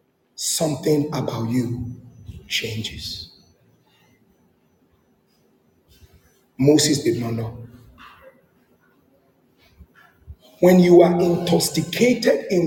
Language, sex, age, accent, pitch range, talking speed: English, male, 50-69, Nigerian, 130-200 Hz, 60 wpm